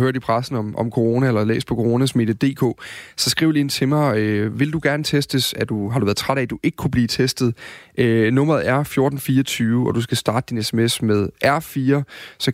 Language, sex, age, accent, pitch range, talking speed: Danish, male, 30-49, native, 115-140 Hz, 220 wpm